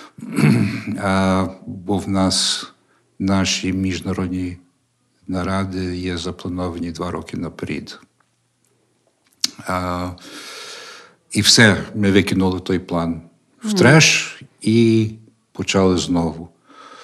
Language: Ukrainian